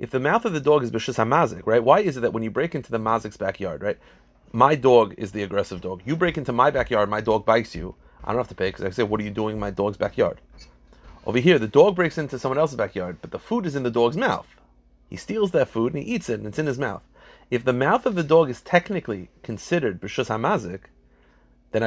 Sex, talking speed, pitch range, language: male, 260 wpm, 105-155 Hz, English